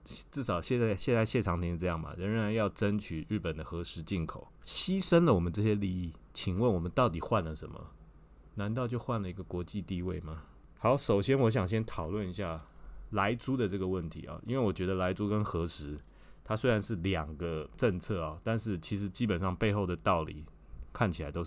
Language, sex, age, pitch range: Chinese, male, 20-39, 85-110 Hz